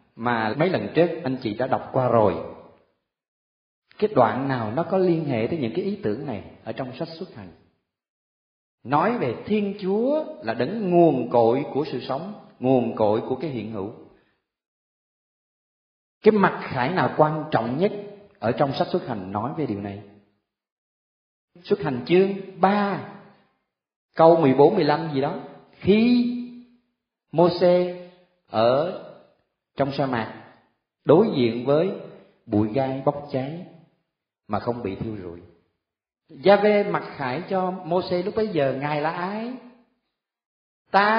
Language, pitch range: Vietnamese, 120-185 Hz